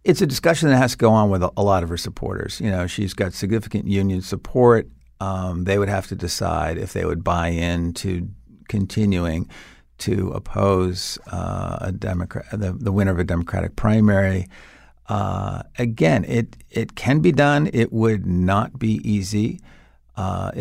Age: 50-69